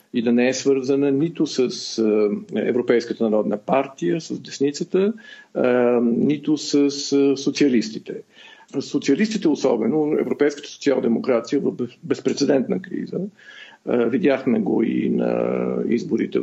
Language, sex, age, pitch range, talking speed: Bulgarian, male, 50-69, 125-150 Hz, 100 wpm